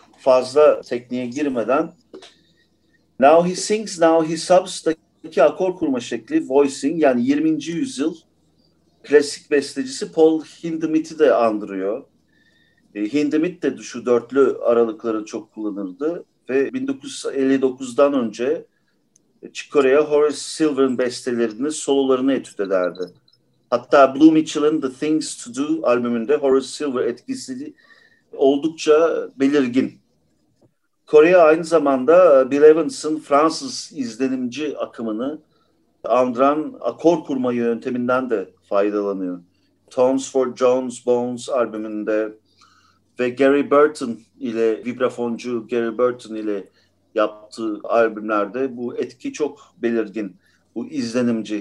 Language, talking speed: English, 100 wpm